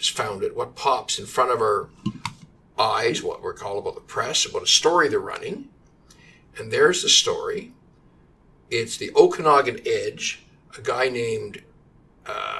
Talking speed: 155 wpm